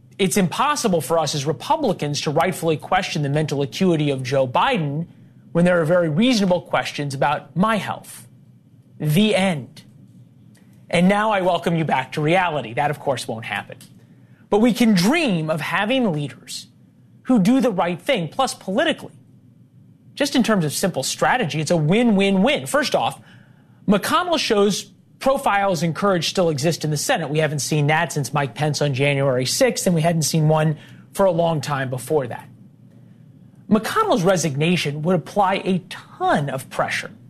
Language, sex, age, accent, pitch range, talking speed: English, male, 30-49, American, 155-200 Hz, 165 wpm